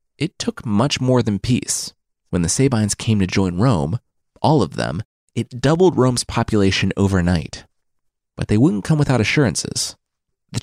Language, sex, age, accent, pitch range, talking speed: English, male, 30-49, American, 100-155 Hz, 160 wpm